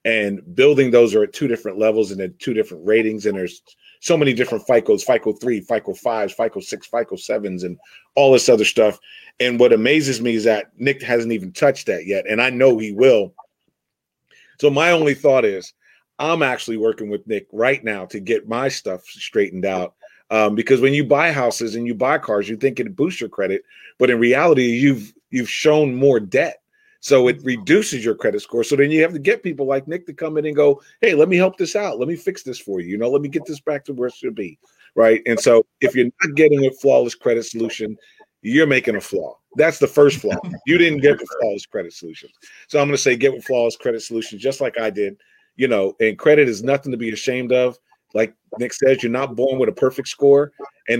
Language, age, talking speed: English, 40-59, 230 wpm